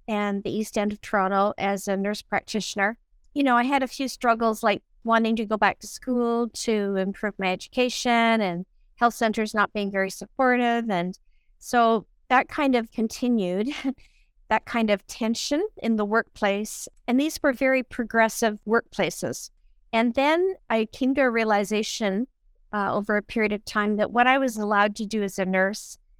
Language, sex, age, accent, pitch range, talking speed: English, female, 50-69, American, 195-230 Hz, 175 wpm